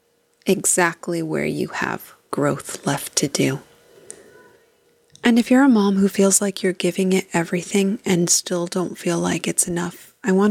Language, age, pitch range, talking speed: English, 20-39, 175-215 Hz, 165 wpm